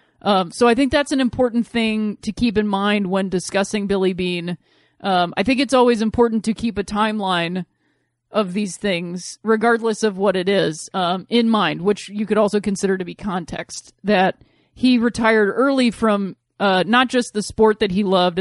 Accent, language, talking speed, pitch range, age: American, English, 190 wpm, 190-230 Hz, 30-49